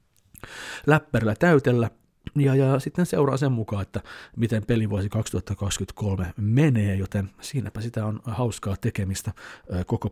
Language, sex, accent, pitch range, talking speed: Finnish, male, native, 95-115 Hz, 125 wpm